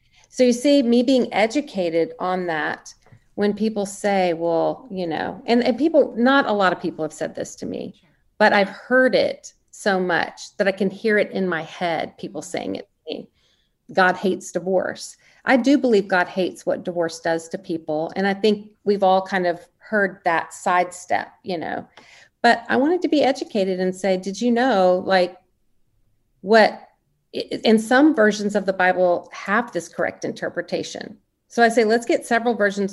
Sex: female